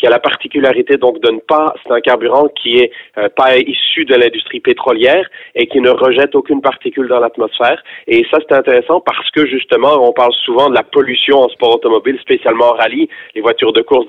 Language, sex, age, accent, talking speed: French, male, 30-49, French, 215 wpm